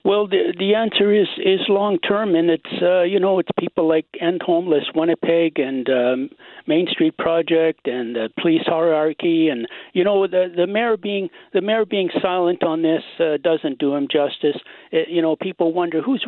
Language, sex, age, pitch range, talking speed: English, male, 60-79, 130-185 Hz, 195 wpm